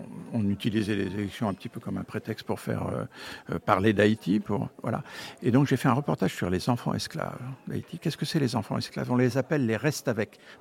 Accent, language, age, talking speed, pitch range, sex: French, French, 50-69, 245 wpm, 110-145 Hz, male